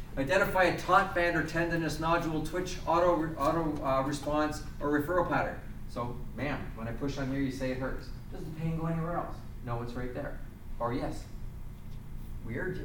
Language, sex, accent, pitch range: English, male, American, 110-160 Hz